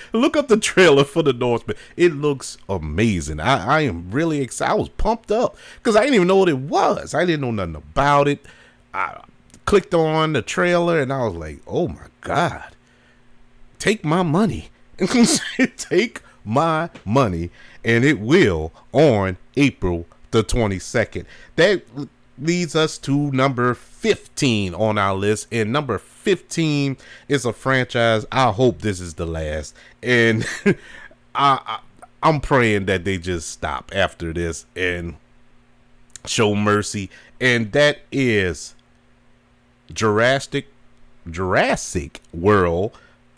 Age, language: 30-49, English